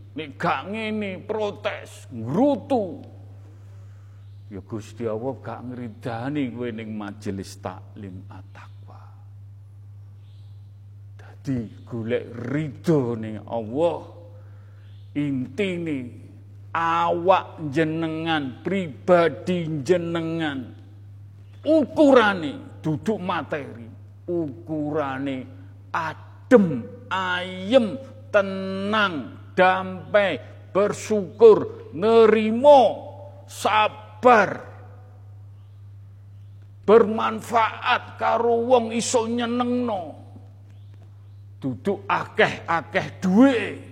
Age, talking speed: 50-69, 60 wpm